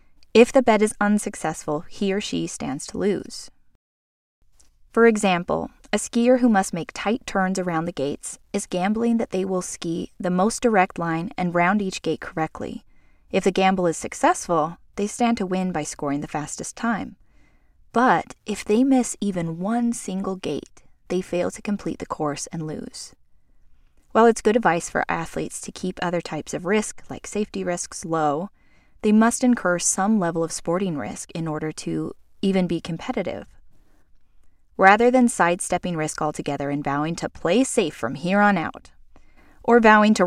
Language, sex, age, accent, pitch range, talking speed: English, female, 20-39, American, 165-215 Hz, 170 wpm